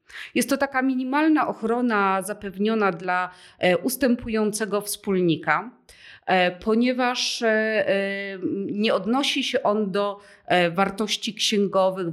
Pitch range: 185-225 Hz